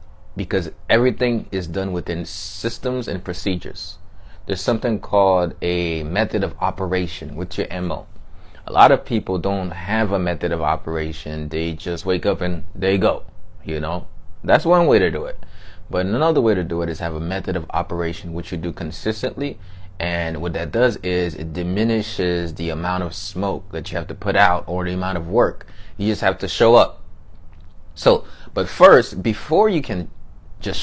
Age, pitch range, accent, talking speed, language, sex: 20-39, 85-110 Hz, American, 185 wpm, English, male